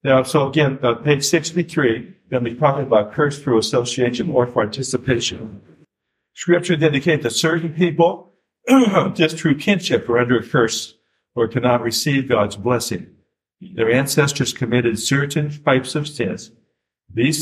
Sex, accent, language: male, American, English